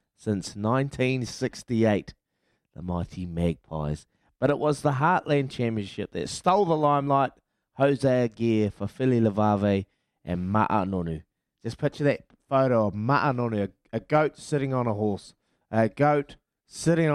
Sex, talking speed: male, 135 wpm